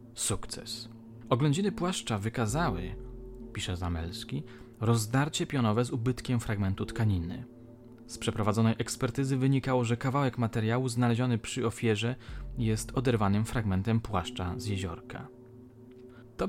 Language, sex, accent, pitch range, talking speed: Polish, male, native, 110-125 Hz, 105 wpm